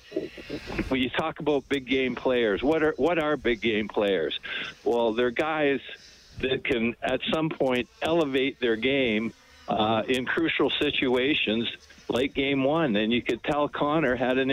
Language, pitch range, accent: English, 115-145 Hz, American